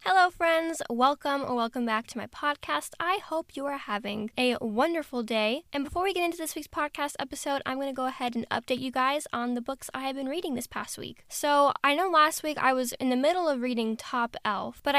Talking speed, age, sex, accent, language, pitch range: 240 wpm, 10-29, female, American, English, 240-290 Hz